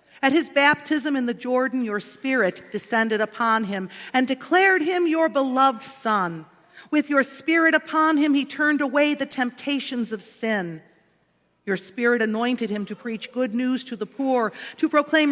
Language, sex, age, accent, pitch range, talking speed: English, female, 40-59, American, 215-280 Hz, 165 wpm